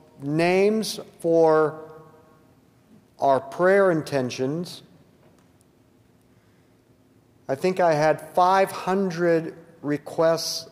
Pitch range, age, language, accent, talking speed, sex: 135-175 Hz, 50-69, English, American, 60 wpm, male